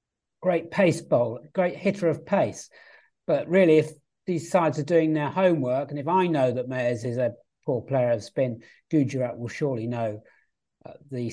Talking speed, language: 180 wpm, English